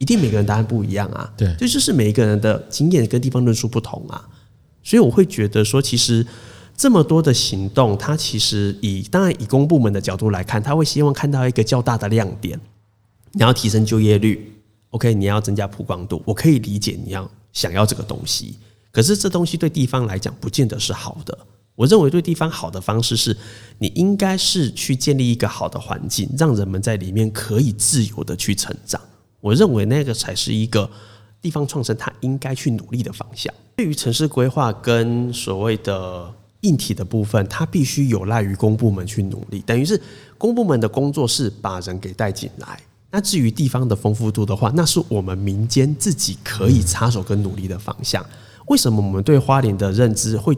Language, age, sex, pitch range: Chinese, 20-39, male, 105-135 Hz